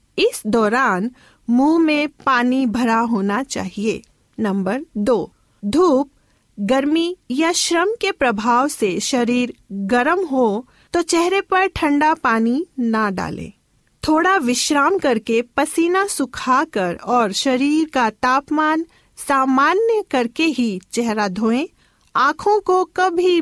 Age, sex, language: 40-59, female, Hindi